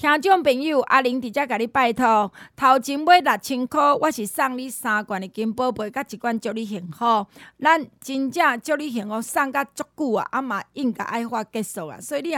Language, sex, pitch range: Chinese, female, 215-285 Hz